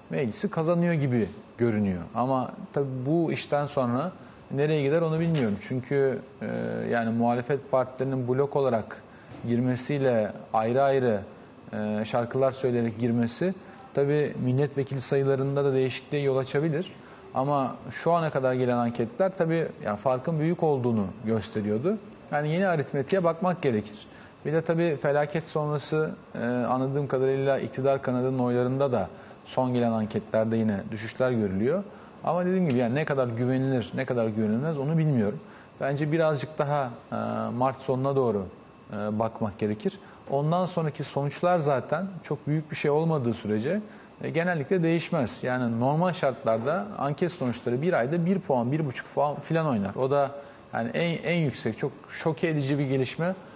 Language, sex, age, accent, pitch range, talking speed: Turkish, male, 40-59, native, 120-165 Hz, 140 wpm